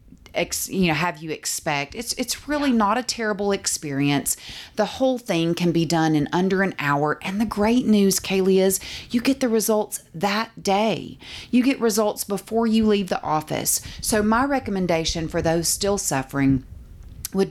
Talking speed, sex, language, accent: 175 wpm, female, English, American